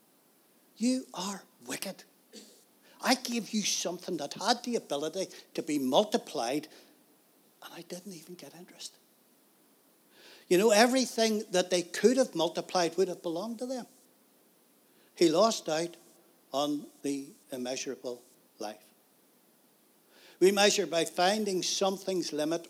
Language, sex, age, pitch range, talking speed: English, male, 60-79, 155-220 Hz, 120 wpm